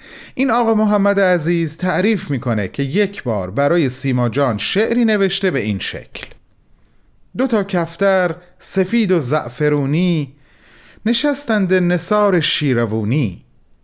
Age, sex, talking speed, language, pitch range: 40-59, male, 110 wpm, Persian, 130-200 Hz